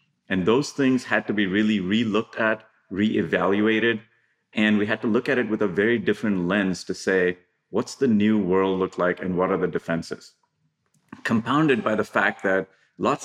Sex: male